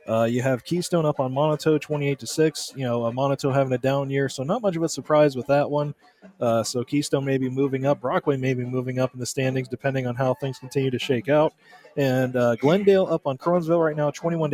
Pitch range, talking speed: 125-150 Hz, 240 wpm